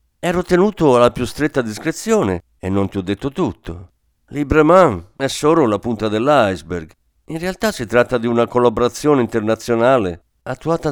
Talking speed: 150 wpm